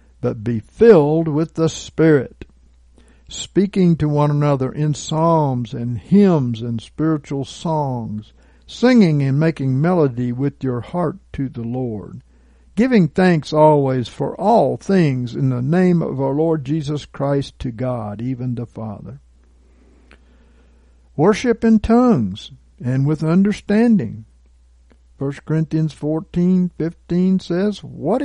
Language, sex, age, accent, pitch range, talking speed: English, male, 60-79, American, 110-170 Hz, 125 wpm